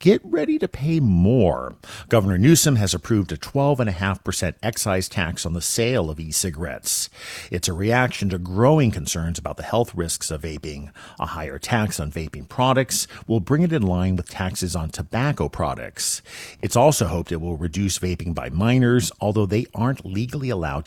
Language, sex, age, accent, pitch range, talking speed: English, male, 50-69, American, 85-115 Hz, 175 wpm